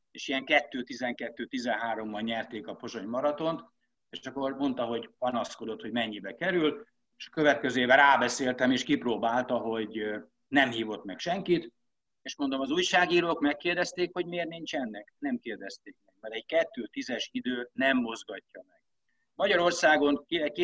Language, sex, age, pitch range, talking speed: Hungarian, male, 60-79, 115-155 Hz, 140 wpm